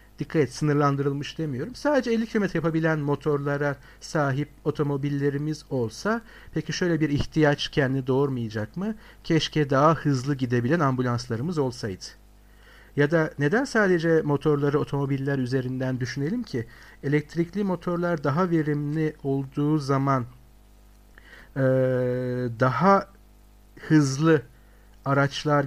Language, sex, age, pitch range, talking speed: Turkish, male, 50-69, 125-175 Hz, 100 wpm